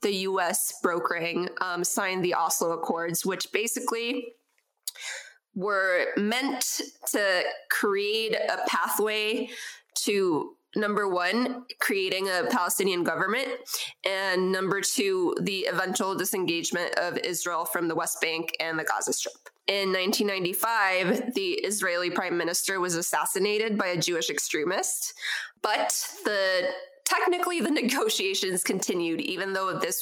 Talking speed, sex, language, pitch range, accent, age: 120 wpm, female, English, 180-255 Hz, American, 20-39